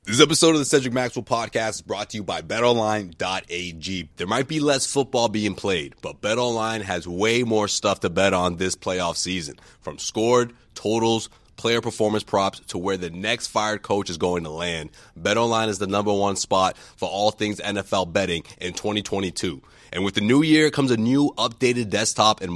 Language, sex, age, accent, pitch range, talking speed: English, male, 30-49, American, 95-120 Hz, 190 wpm